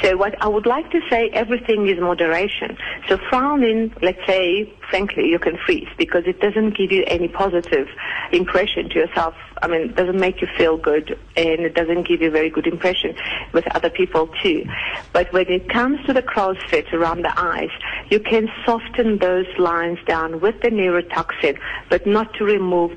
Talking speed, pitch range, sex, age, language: 190 wpm, 170-205 Hz, female, 50-69, English